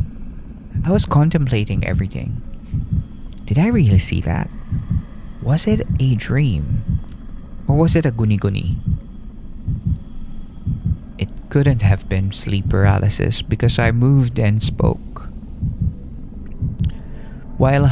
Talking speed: 100 wpm